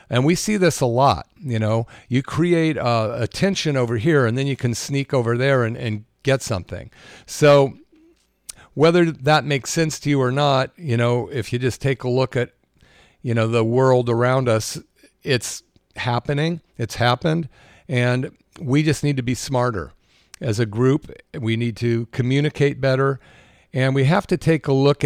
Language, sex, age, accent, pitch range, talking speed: English, male, 50-69, American, 115-145 Hz, 180 wpm